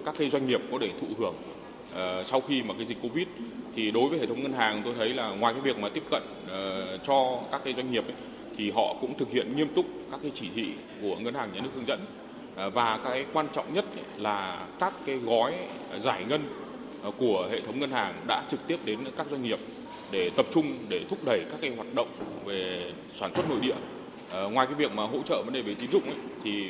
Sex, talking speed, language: male, 245 wpm, Vietnamese